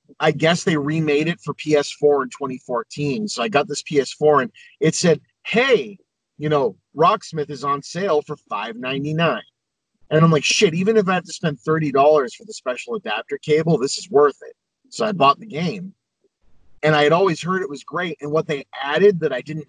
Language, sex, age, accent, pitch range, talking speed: English, male, 30-49, American, 145-210 Hz, 200 wpm